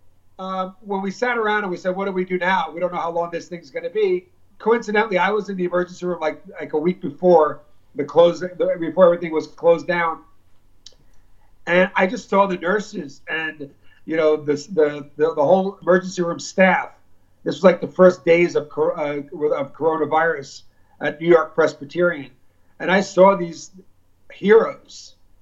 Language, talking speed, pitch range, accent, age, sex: English, 190 wpm, 150-185 Hz, American, 50-69, male